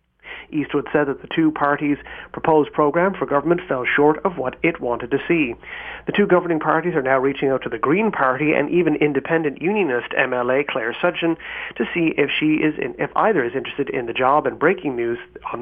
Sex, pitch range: male, 135-175 Hz